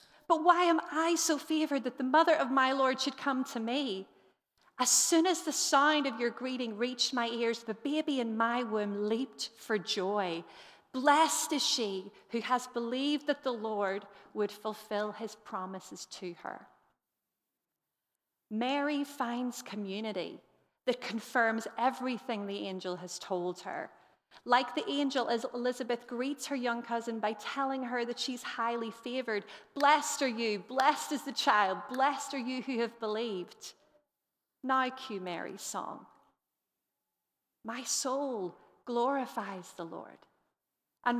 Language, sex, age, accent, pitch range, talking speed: English, female, 40-59, American, 225-285 Hz, 145 wpm